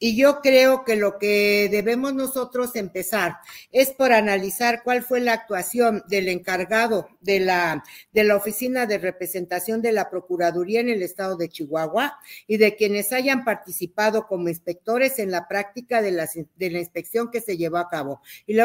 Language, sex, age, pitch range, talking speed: Spanish, female, 50-69, 190-240 Hz, 175 wpm